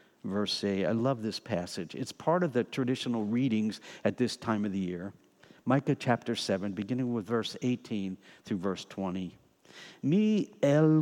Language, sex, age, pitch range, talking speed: English, male, 60-79, 105-160 Hz, 165 wpm